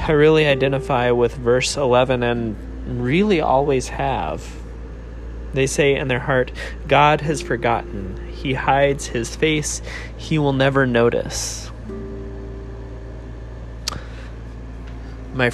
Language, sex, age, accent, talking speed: English, male, 20-39, American, 105 wpm